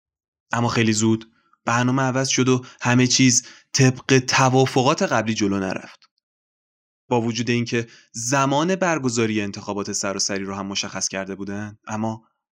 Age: 20-39